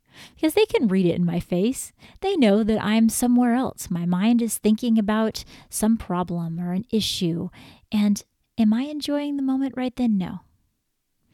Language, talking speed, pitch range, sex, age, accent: English, 175 wpm, 190-235 Hz, female, 30-49, American